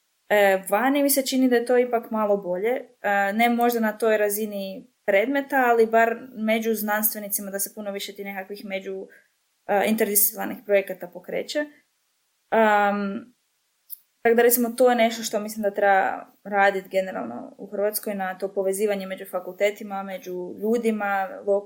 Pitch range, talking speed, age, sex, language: 200-240 Hz, 150 wpm, 20-39, female, Croatian